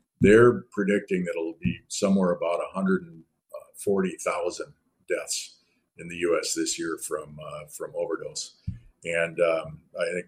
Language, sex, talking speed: English, male, 135 wpm